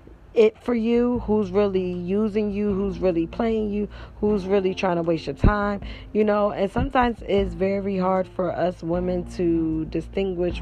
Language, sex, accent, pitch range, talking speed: English, female, American, 185-205 Hz, 170 wpm